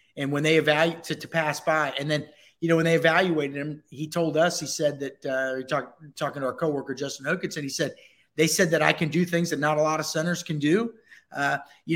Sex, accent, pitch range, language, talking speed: male, American, 150-185 Hz, English, 255 wpm